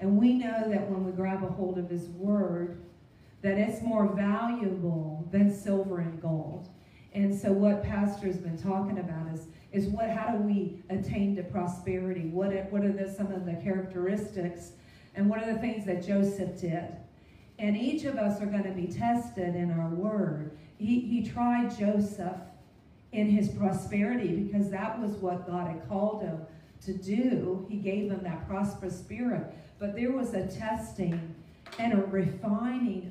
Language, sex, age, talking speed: English, female, 40-59, 170 wpm